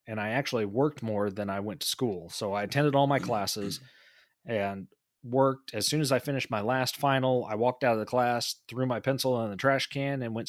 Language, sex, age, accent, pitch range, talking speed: English, male, 30-49, American, 105-125 Hz, 235 wpm